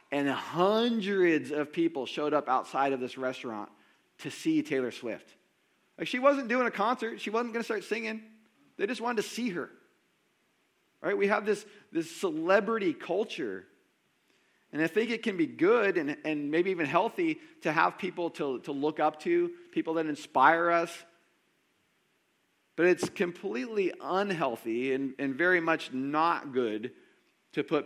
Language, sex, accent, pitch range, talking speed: English, male, American, 145-220 Hz, 160 wpm